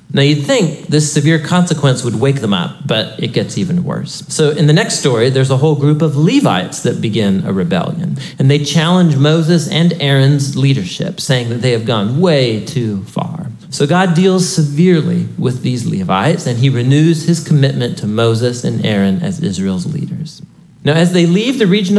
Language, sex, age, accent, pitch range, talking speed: English, male, 40-59, American, 140-180 Hz, 190 wpm